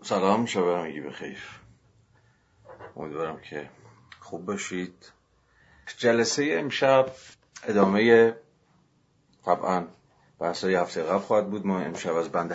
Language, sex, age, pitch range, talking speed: Persian, male, 40-59, 90-105 Hz, 100 wpm